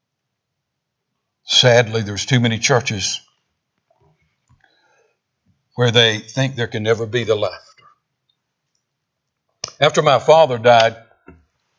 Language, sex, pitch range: English, male, 120-155 Hz